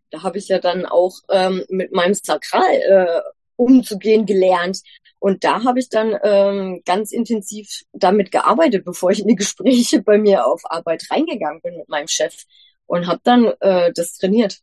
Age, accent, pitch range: 20-39, German, 175-225 Hz